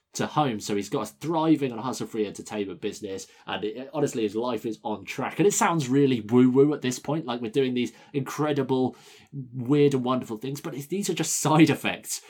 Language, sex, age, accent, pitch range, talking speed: English, male, 20-39, British, 110-145 Hz, 205 wpm